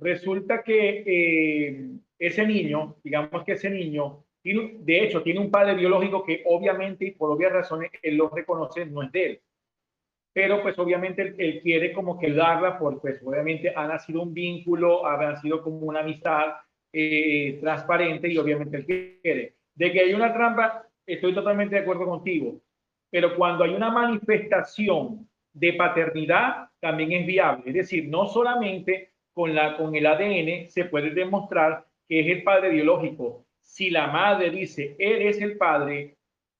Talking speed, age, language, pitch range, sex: 165 wpm, 40-59, Spanish, 155-195 Hz, male